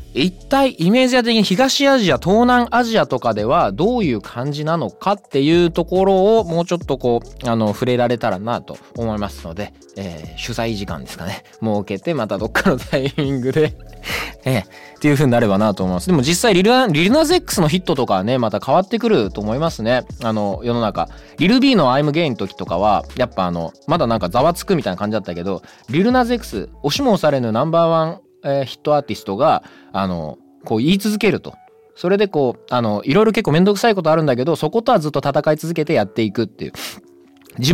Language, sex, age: Japanese, male, 20-39